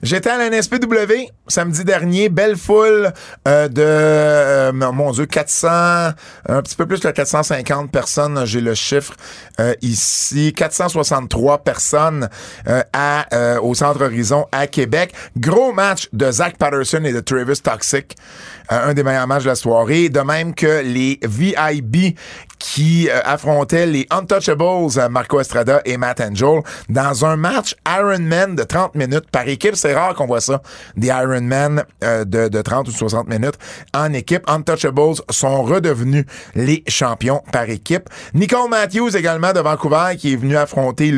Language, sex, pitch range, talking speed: French, male, 130-170 Hz, 155 wpm